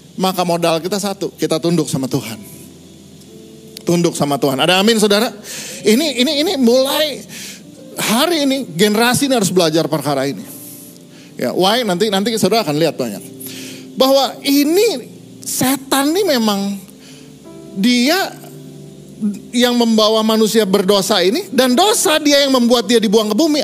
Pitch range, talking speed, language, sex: 170-250 Hz, 135 wpm, Indonesian, male